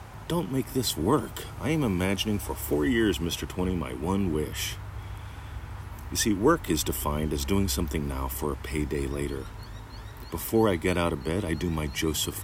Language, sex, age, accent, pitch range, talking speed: English, male, 40-59, American, 80-105 Hz, 185 wpm